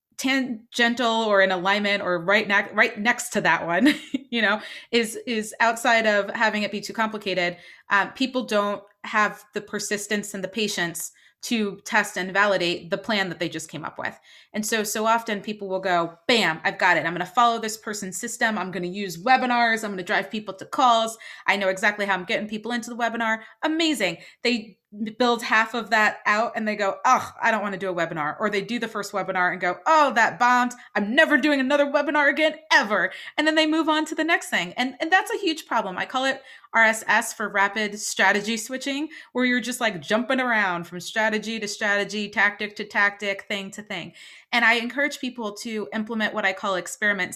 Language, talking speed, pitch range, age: English, 220 wpm, 195-240 Hz, 30-49